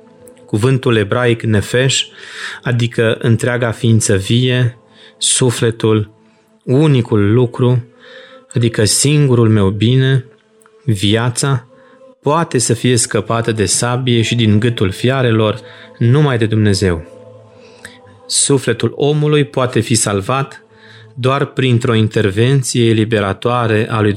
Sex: male